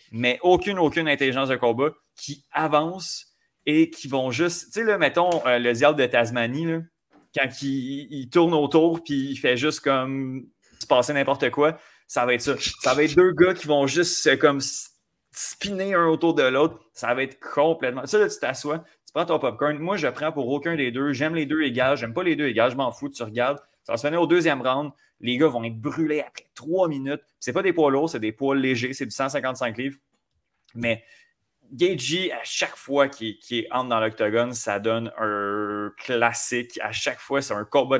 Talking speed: 210 wpm